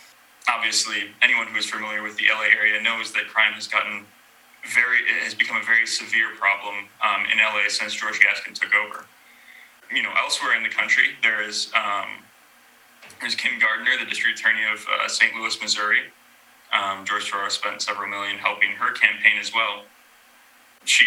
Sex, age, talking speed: male, 20-39, 175 wpm